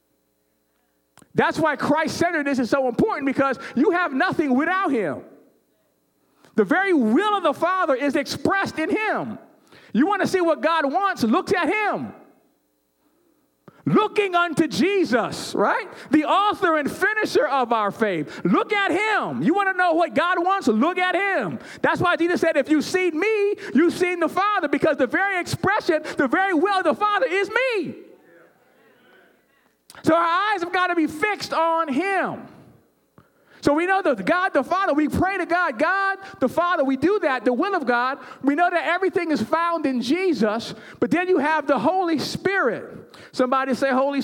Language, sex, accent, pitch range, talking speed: English, male, American, 265-365 Hz, 175 wpm